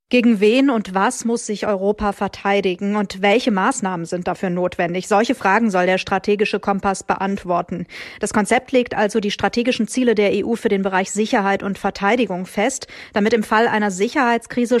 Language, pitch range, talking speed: German, 200-245 Hz, 170 wpm